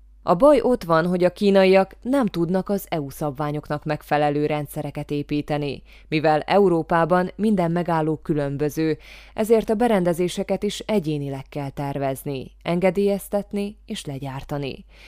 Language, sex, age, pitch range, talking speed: Hungarian, female, 20-39, 145-180 Hz, 120 wpm